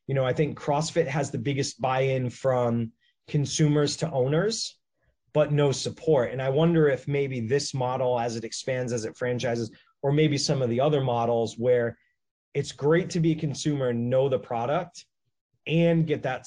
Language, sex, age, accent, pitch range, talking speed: English, male, 30-49, American, 120-150 Hz, 180 wpm